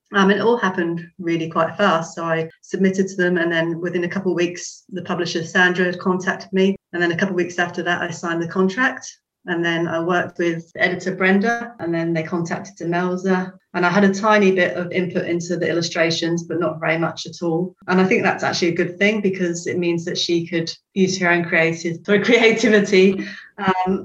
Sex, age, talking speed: female, 30-49, 215 wpm